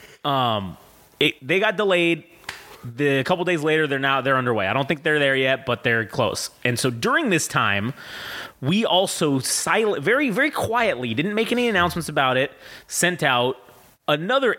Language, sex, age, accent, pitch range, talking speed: English, male, 30-49, American, 120-165 Hz, 175 wpm